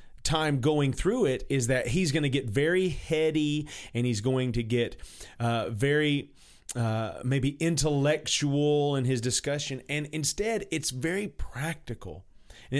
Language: English